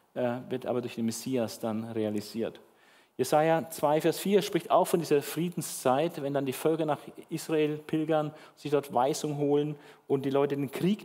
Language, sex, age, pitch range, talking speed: German, male, 50-69, 125-160 Hz, 175 wpm